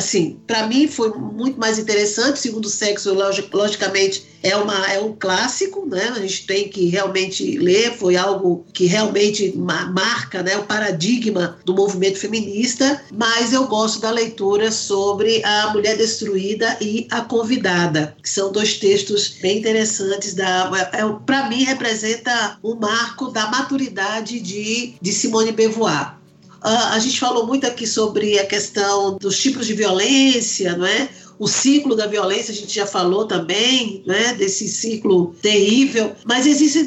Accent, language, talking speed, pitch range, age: Brazilian, Portuguese, 145 wpm, 200-255 Hz, 50-69